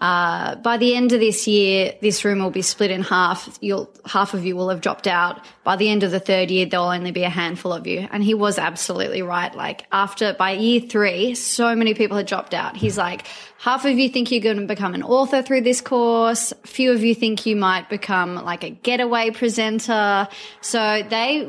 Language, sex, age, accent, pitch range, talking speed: English, female, 20-39, Australian, 185-225 Hz, 225 wpm